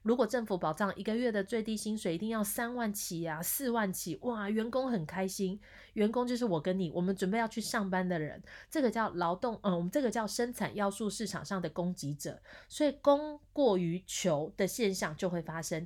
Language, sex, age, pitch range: Chinese, female, 30-49, 175-225 Hz